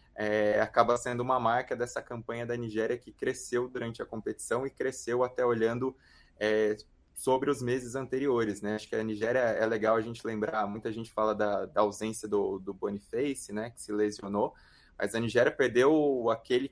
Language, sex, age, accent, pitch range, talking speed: Portuguese, male, 20-39, Brazilian, 105-120 Hz, 175 wpm